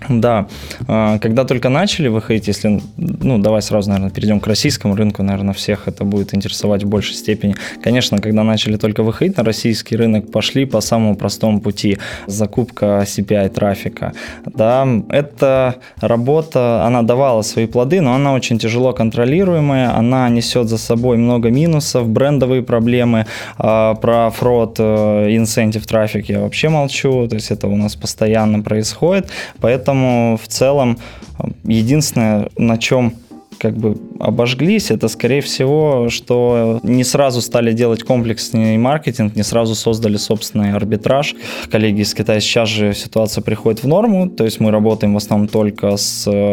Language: Russian